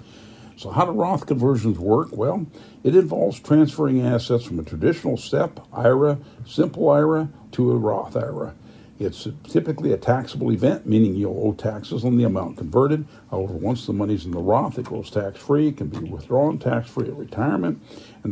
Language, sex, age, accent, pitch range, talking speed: English, male, 60-79, American, 105-135 Hz, 170 wpm